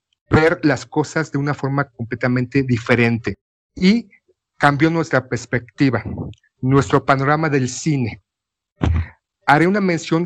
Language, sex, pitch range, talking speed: Spanish, male, 125-165 Hz, 110 wpm